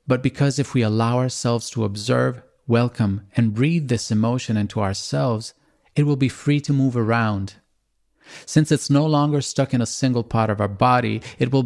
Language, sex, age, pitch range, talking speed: Italian, male, 30-49, 105-125 Hz, 185 wpm